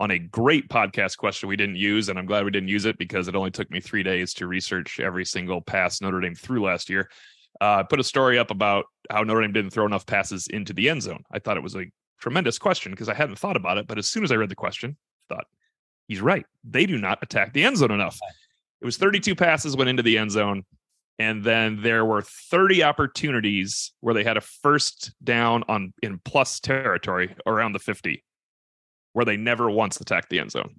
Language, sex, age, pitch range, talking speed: English, male, 30-49, 100-140 Hz, 230 wpm